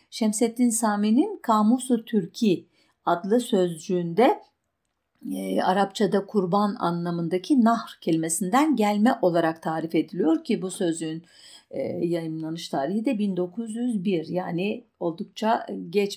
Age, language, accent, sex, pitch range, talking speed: 50-69, German, Turkish, female, 180-245 Hz, 100 wpm